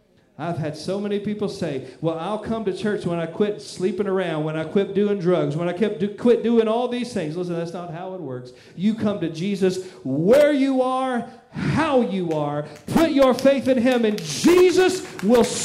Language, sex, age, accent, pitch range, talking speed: English, male, 40-59, American, 170-260 Hz, 205 wpm